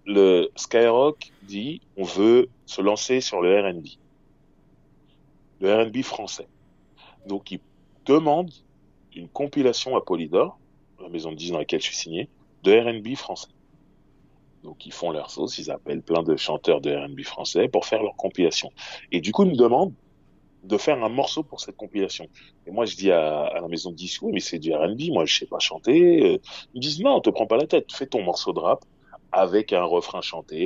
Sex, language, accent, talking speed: male, French, French, 200 wpm